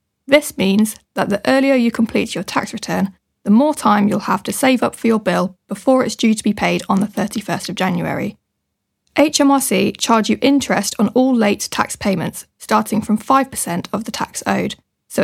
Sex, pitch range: female, 200-255 Hz